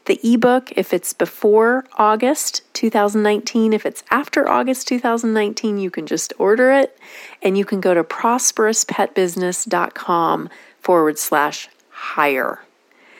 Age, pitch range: 30-49, 190-255 Hz